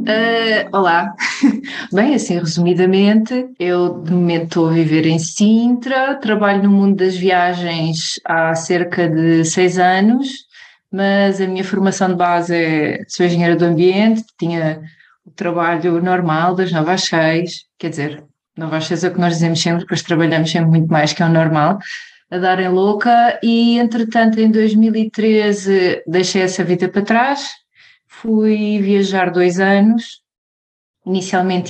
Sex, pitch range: female, 170-215 Hz